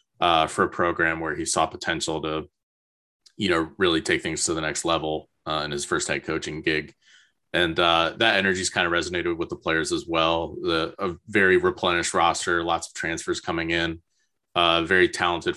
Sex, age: male, 20-39